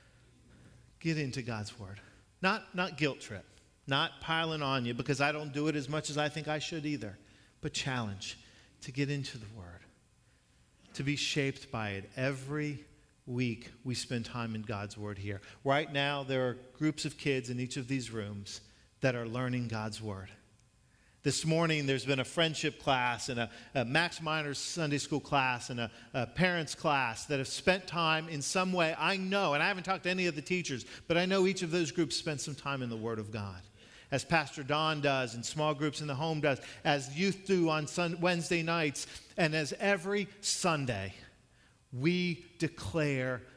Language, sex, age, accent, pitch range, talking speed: English, male, 40-59, American, 120-155 Hz, 195 wpm